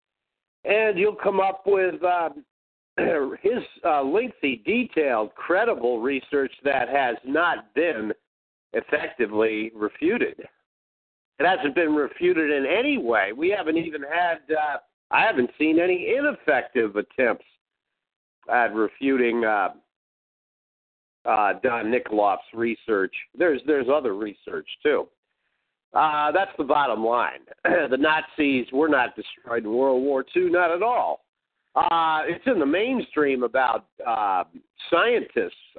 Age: 50-69